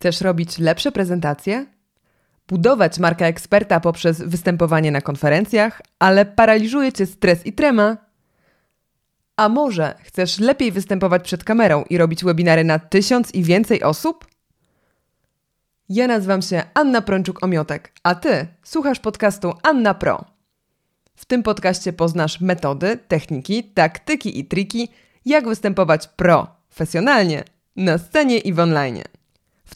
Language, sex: Polish, female